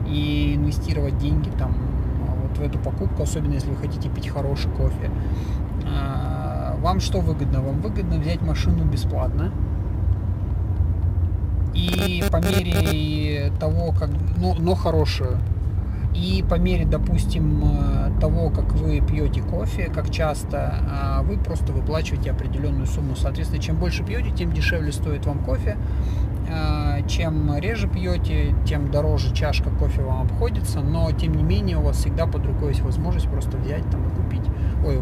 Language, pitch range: Russian, 75-95 Hz